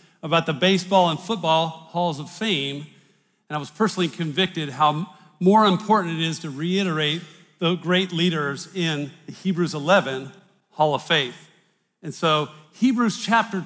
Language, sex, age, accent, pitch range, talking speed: English, male, 50-69, American, 155-200 Hz, 150 wpm